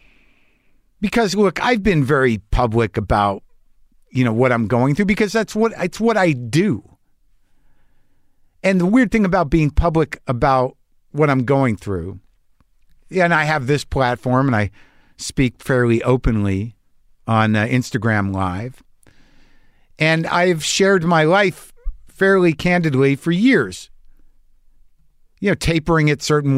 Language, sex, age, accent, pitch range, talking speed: English, male, 50-69, American, 115-170 Hz, 135 wpm